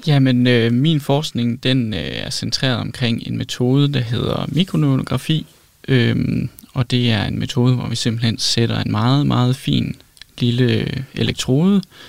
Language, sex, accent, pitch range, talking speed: Danish, male, native, 115-135 Hz, 145 wpm